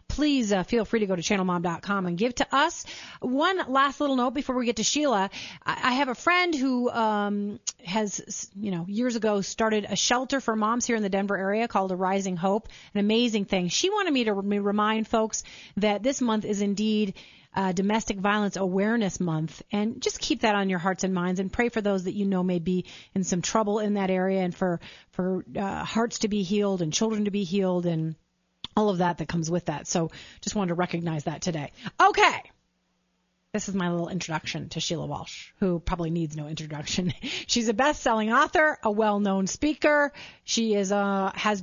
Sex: female